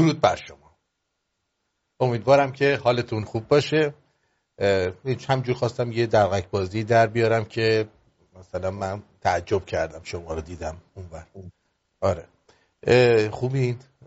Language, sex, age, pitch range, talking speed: English, male, 50-69, 110-135 Hz, 110 wpm